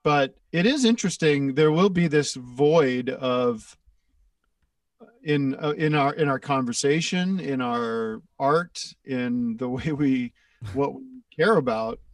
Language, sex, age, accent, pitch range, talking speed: English, male, 40-59, American, 125-165 Hz, 140 wpm